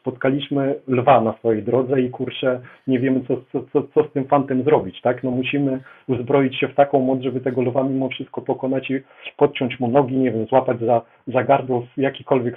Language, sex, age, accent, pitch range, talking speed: Polish, male, 40-59, native, 135-165 Hz, 205 wpm